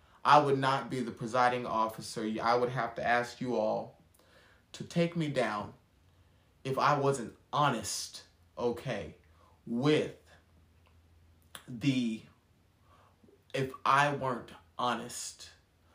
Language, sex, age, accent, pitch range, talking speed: English, male, 30-49, American, 95-135 Hz, 110 wpm